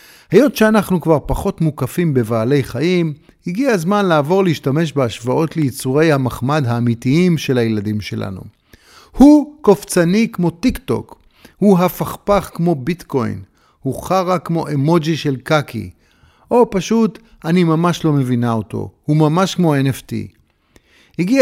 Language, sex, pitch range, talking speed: Hebrew, male, 130-180 Hz, 125 wpm